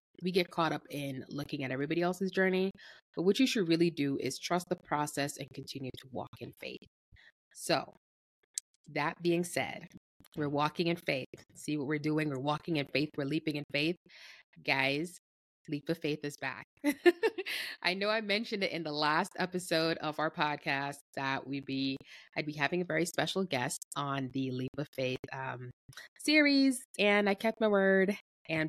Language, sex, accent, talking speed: English, female, American, 180 wpm